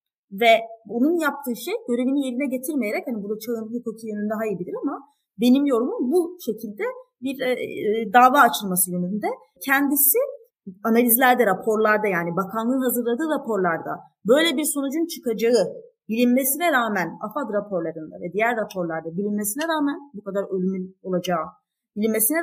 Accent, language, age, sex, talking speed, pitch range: native, Turkish, 30-49, female, 130 wpm, 215-290 Hz